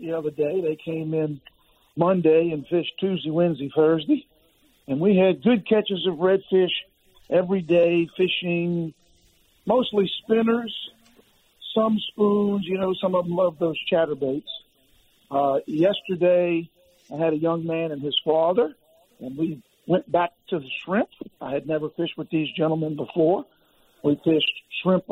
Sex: male